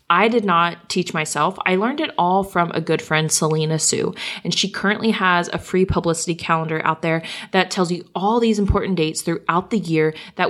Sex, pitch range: female, 160-195 Hz